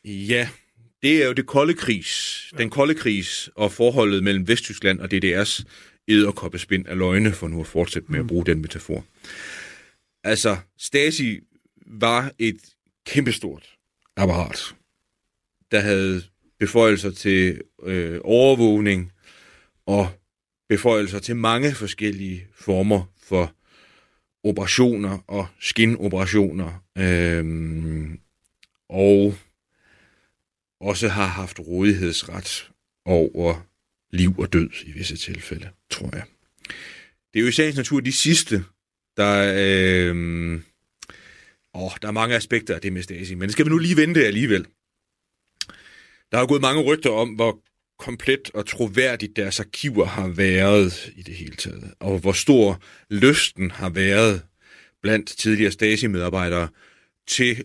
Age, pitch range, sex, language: 30-49, 90-115 Hz, male, Danish